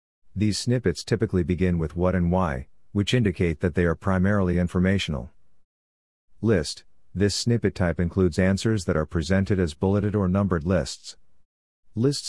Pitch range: 85-100 Hz